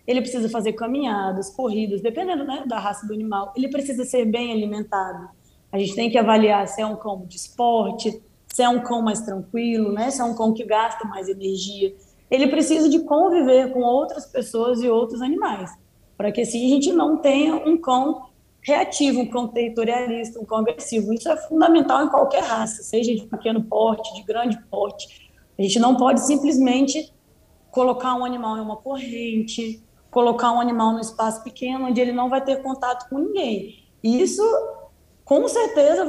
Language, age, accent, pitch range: Portuguese, 20-39, Brazilian, 220-275 Hz